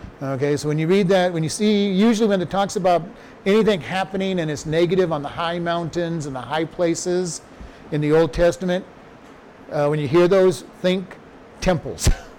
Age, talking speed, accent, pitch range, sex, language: 50-69, 185 wpm, American, 145-175 Hz, male, English